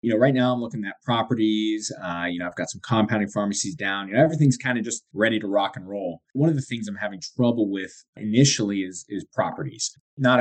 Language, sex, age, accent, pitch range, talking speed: English, male, 20-39, American, 100-125 Hz, 235 wpm